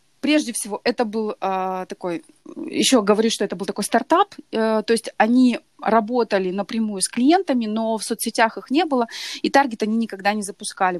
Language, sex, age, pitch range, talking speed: Russian, female, 20-39, 200-250 Hz, 180 wpm